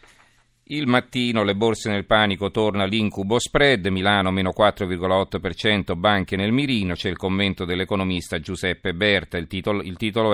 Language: Italian